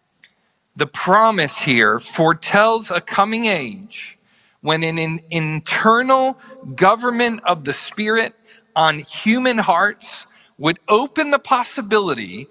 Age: 40-59